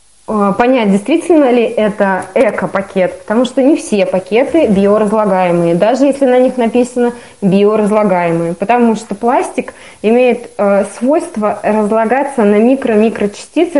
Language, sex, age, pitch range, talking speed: Russian, female, 20-39, 205-255 Hz, 115 wpm